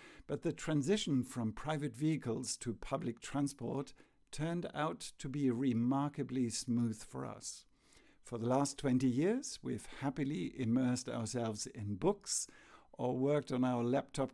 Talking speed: 140 wpm